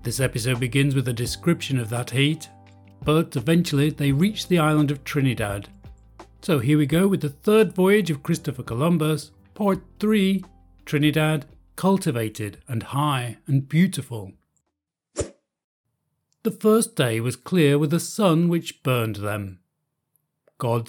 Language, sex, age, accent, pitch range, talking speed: English, male, 40-59, British, 125-165 Hz, 140 wpm